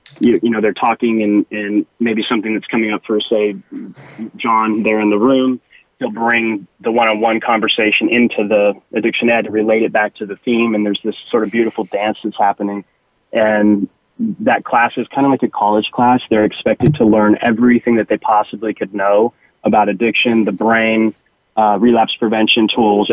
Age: 20-39